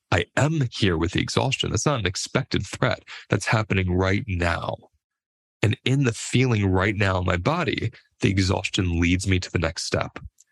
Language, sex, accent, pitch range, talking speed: English, male, American, 90-110 Hz, 185 wpm